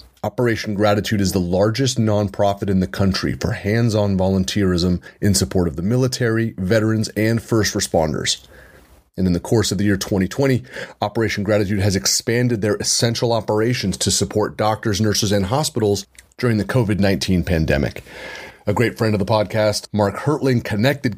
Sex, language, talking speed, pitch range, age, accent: male, English, 155 wpm, 100-125 Hz, 30-49, American